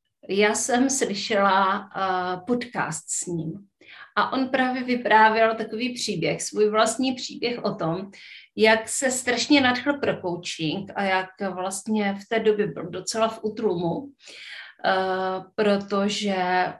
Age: 30-49